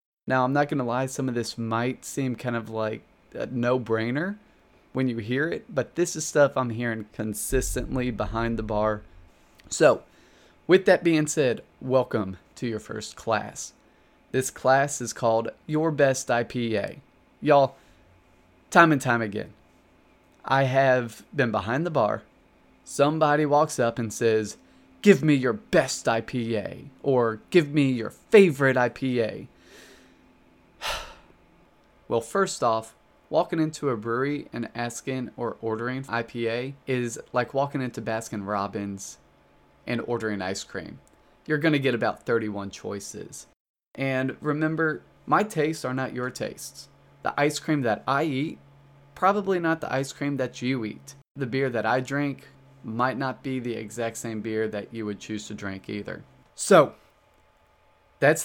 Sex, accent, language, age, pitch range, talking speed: male, American, English, 20-39, 110-140 Hz, 150 wpm